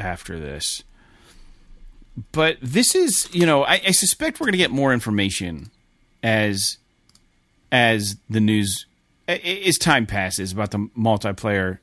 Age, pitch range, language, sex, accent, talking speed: 30-49, 105-150 Hz, English, male, American, 130 wpm